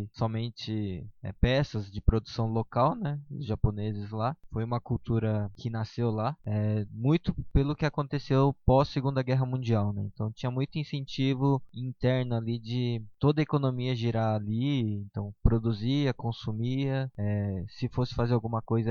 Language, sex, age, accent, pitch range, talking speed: Portuguese, male, 20-39, Brazilian, 110-135 Hz, 145 wpm